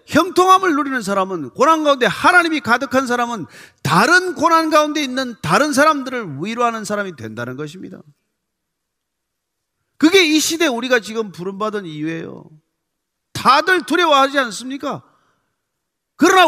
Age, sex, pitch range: 40-59, male, 160-265 Hz